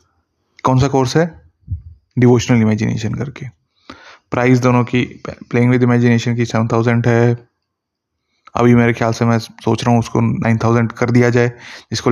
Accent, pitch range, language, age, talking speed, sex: native, 115-125 Hz, Hindi, 20-39, 160 wpm, male